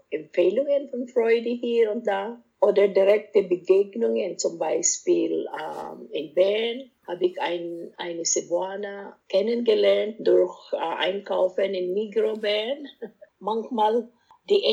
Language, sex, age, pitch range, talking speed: German, female, 50-69, 195-275 Hz, 115 wpm